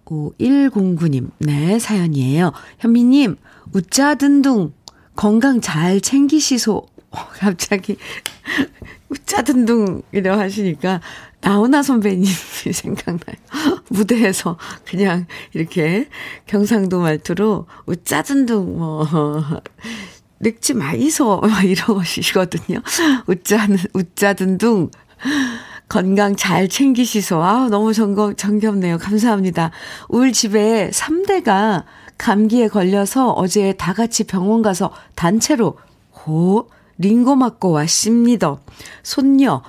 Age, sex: 50-69, female